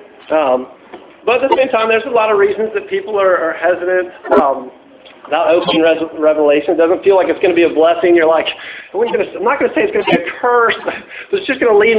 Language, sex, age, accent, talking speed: English, male, 50-69, American, 255 wpm